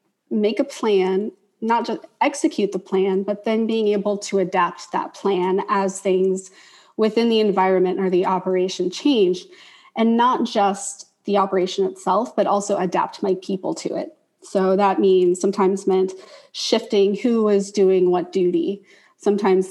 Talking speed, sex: 150 wpm, female